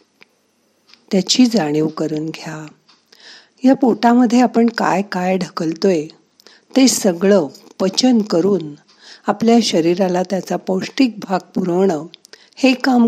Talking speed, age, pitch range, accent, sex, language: 90 wpm, 50-69, 160-220 Hz, native, female, Marathi